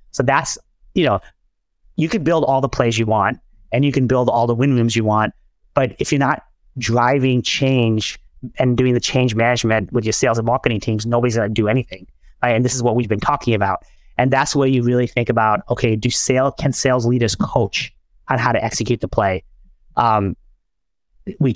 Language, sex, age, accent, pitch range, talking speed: English, male, 30-49, American, 110-130 Hz, 210 wpm